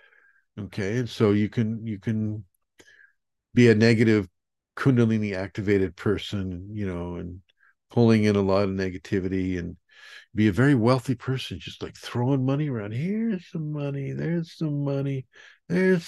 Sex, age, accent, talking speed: male, 50-69, American, 150 wpm